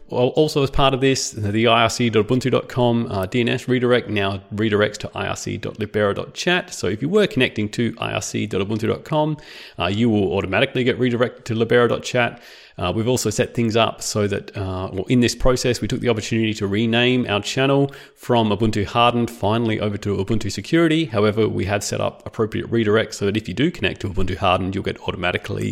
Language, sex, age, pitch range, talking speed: English, male, 30-49, 105-130 Hz, 170 wpm